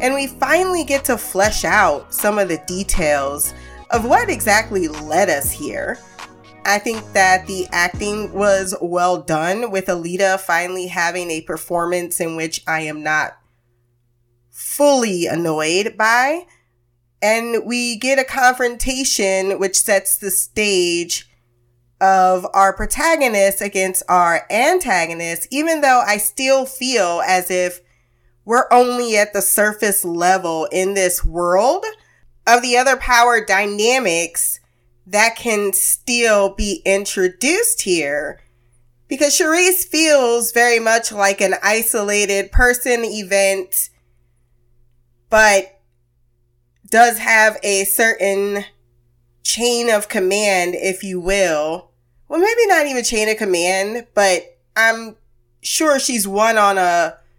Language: English